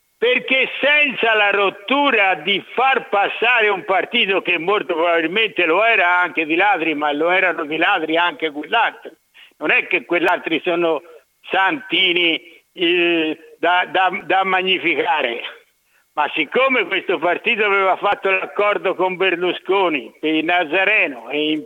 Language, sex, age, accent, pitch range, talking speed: Italian, male, 60-79, native, 175-290 Hz, 130 wpm